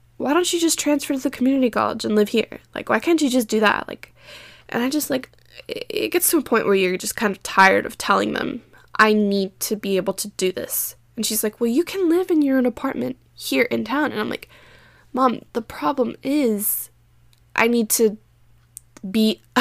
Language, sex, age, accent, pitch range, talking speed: English, female, 10-29, American, 200-280 Hz, 220 wpm